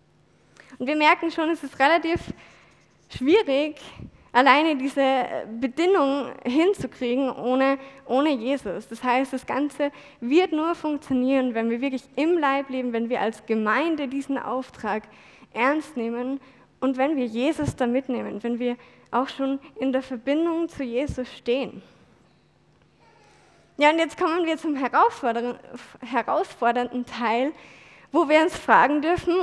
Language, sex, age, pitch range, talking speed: German, female, 20-39, 240-290 Hz, 135 wpm